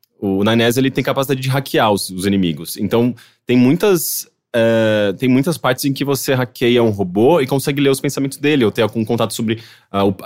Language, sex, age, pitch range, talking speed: English, male, 20-39, 105-140 Hz, 205 wpm